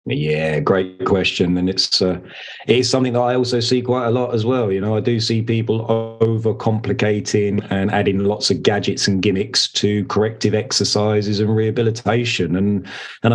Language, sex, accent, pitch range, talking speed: English, male, British, 95-120 Hz, 175 wpm